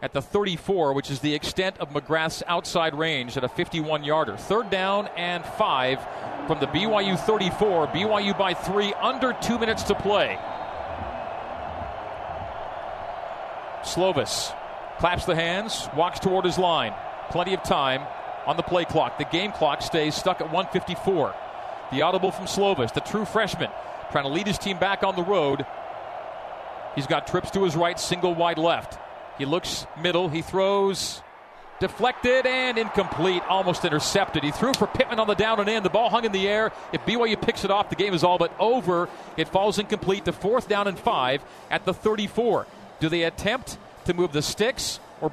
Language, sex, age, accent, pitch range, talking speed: English, male, 40-59, American, 170-215 Hz, 175 wpm